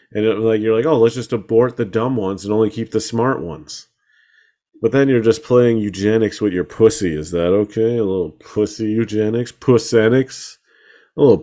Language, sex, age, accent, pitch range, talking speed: English, male, 30-49, American, 105-135 Hz, 195 wpm